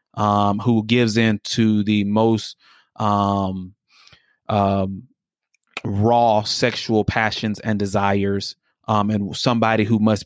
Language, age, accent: English, 30-49, American